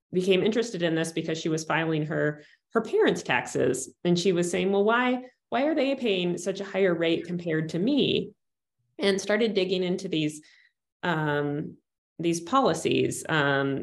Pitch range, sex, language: 155-195 Hz, female, English